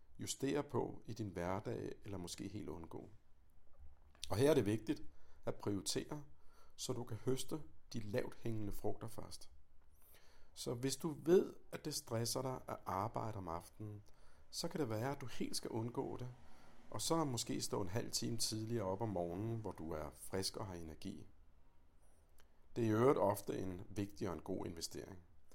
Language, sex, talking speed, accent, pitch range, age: Danish, male, 180 wpm, native, 85-115 Hz, 60-79